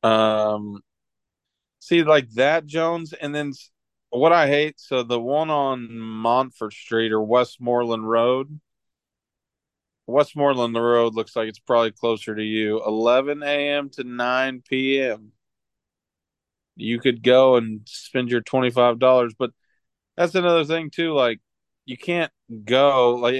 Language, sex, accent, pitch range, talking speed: English, male, American, 115-135 Hz, 125 wpm